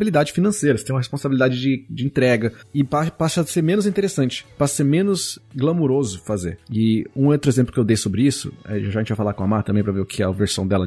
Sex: male